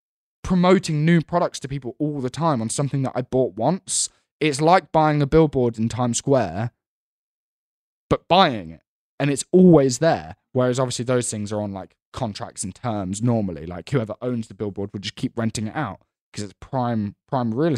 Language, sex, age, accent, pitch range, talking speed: English, male, 10-29, British, 110-145 Hz, 190 wpm